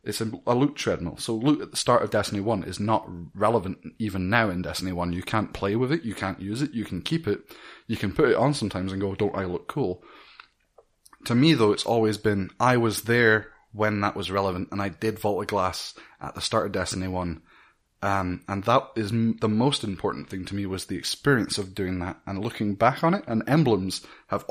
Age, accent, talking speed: 20-39, British, 230 wpm